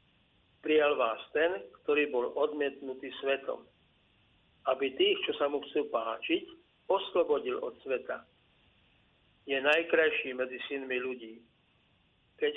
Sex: male